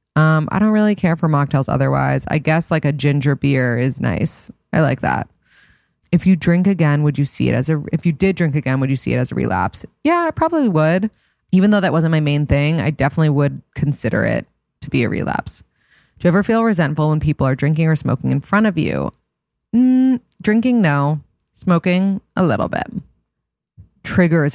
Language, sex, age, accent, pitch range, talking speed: English, female, 20-39, American, 140-175 Hz, 205 wpm